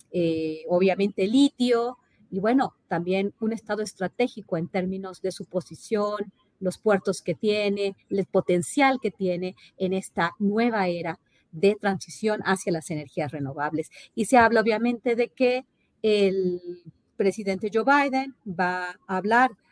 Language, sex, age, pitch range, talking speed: Spanish, female, 40-59, 185-225 Hz, 135 wpm